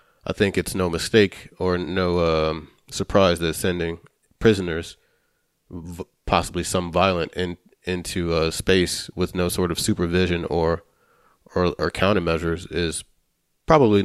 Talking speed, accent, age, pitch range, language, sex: 130 wpm, American, 30-49, 85-95 Hz, English, male